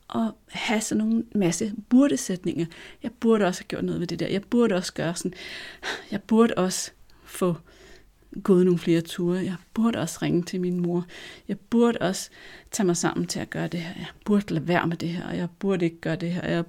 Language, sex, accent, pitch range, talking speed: Danish, female, native, 170-210 Hz, 215 wpm